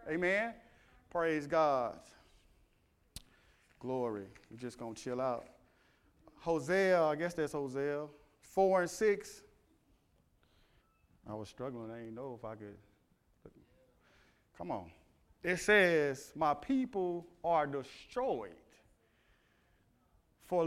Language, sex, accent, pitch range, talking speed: English, male, American, 135-185 Hz, 105 wpm